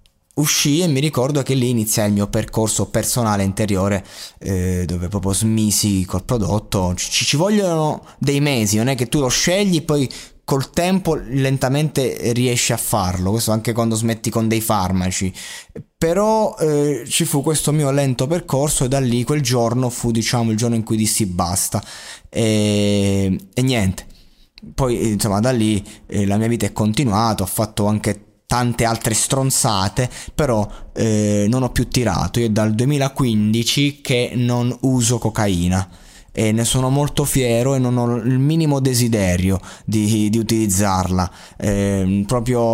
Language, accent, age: Italian, native, 20-39